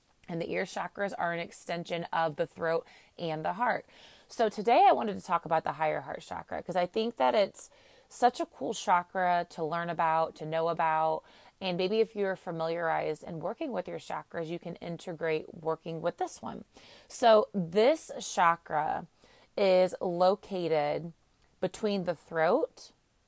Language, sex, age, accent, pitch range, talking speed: English, female, 30-49, American, 165-200 Hz, 165 wpm